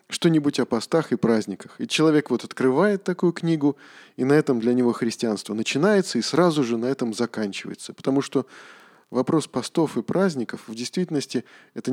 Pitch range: 115-155 Hz